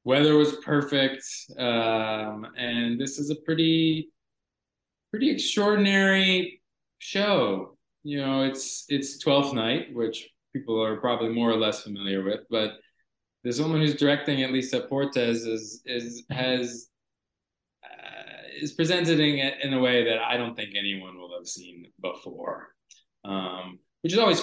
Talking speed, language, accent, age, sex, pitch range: 140 wpm, English, American, 20-39, male, 110-145 Hz